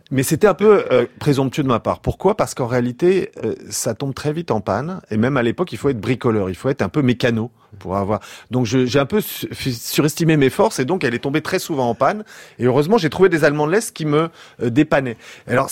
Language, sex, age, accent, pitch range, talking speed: French, male, 40-59, French, 120-170 Hz, 255 wpm